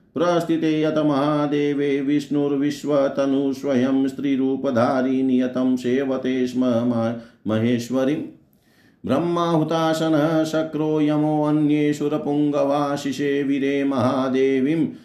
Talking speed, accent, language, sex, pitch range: 45 wpm, native, Hindi, male, 130-150 Hz